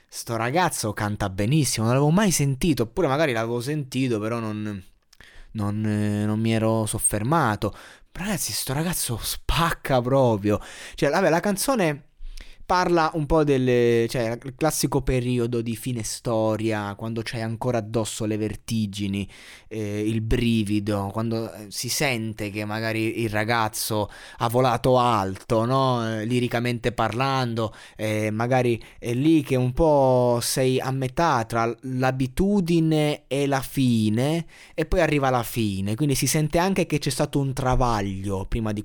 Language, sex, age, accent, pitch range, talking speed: Italian, male, 20-39, native, 110-145 Hz, 140 wpm